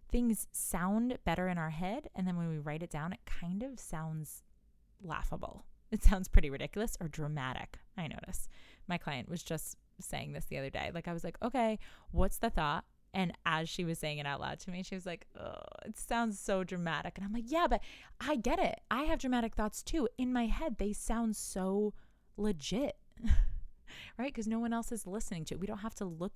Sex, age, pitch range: female, 20-39, 165-235 Hz